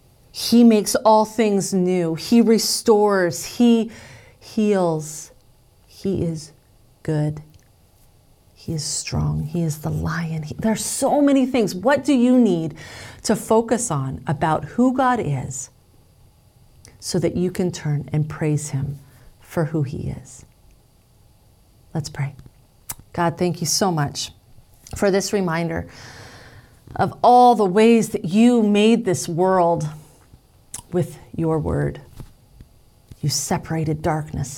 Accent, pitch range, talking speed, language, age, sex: American, 125-190 Hz, 125 wpm, English, 30-49, female